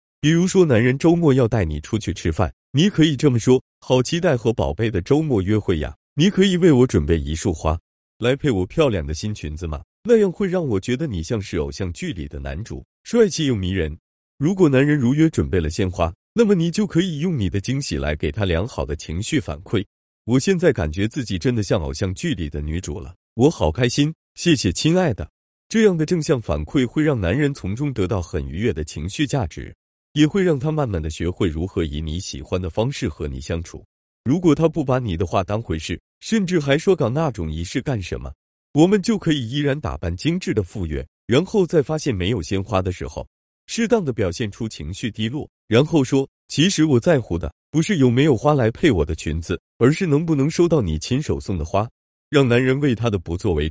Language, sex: Chinese, male